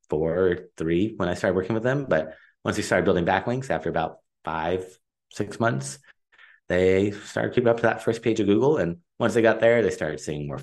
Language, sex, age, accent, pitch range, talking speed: English, male, 30-49, American, 80-105 Hz, 220 wpm